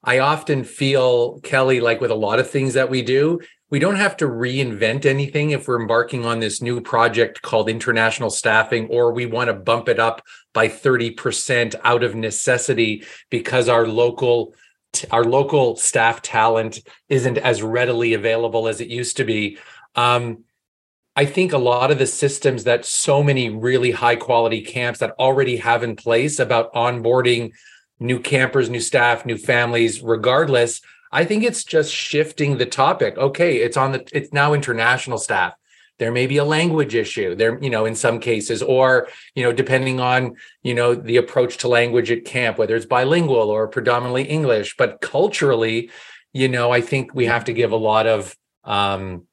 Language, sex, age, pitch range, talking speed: English, male, 30-49, 115-135 Hz, 175 wpm